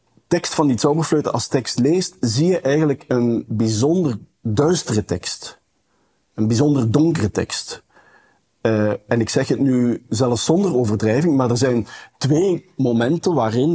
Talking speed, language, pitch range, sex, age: 145 wpm, Dutch, 115-155 Hz, male, 50-69